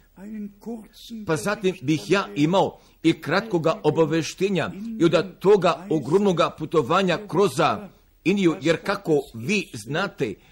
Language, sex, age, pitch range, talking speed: Croatian, male, 50-69, 165-200 Hz, 110 wpm